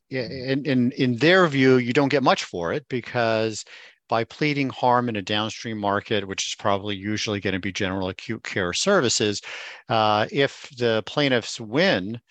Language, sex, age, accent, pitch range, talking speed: English, male, 50-69, American, 105-125 Hz, 160 wpm